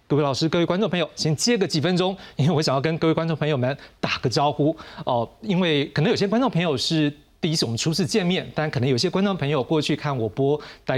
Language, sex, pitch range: Chinese, male, 130-165 Hz